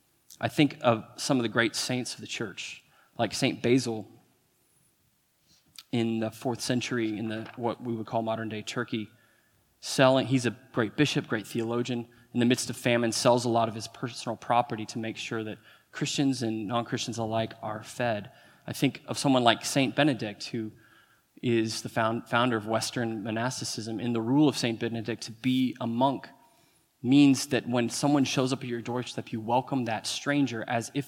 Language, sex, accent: English, male, American